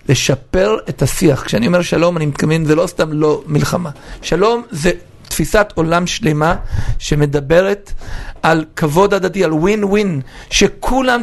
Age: 50-69